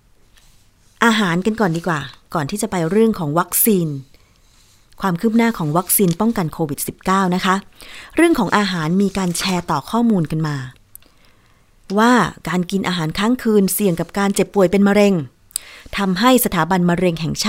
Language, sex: Thai, female